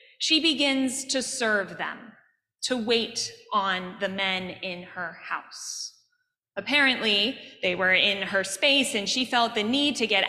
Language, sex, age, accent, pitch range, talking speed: English, female, 20-39, American, 200-280 Hz, 150 wpm